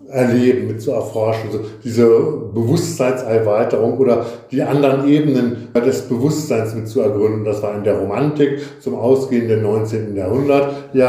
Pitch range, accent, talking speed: 115-135 Hz, German, 140 wpm